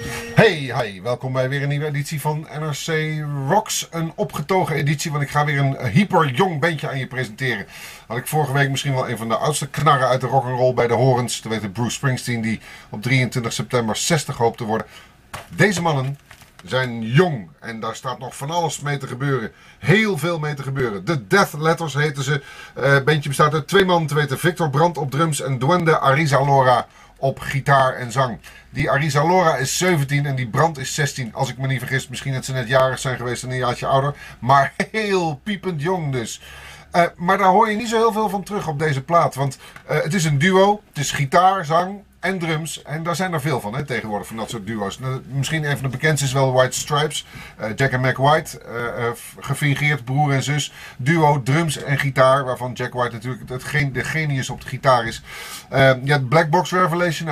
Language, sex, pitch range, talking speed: Dutch, male, 125-160 Hz, 215 wpm